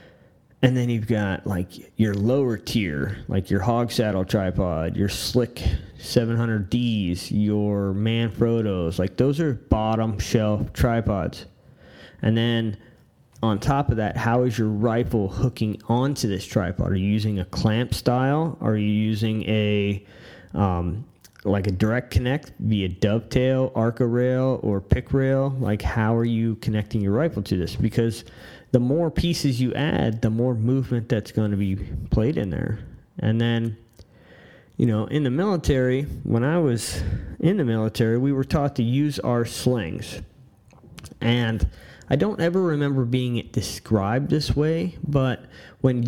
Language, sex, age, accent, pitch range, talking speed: English, male, 20-39, American, 105-130 Hz, 155 wpm